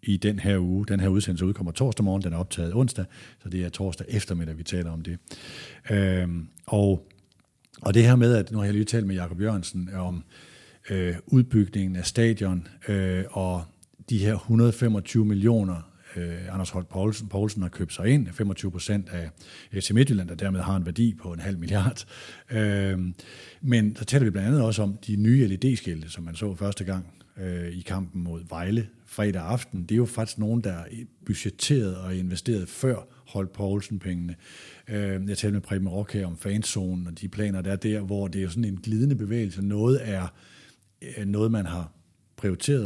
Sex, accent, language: male, native, Danish